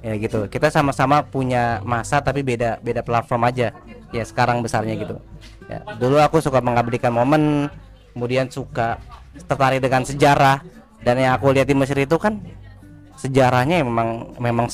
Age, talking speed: 20-39, 150 wpm